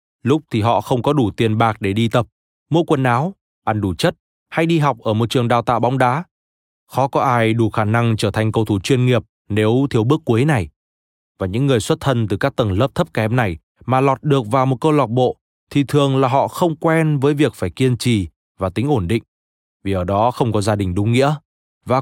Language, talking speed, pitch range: Vietnamese, 245 wpm, 105-140 Hz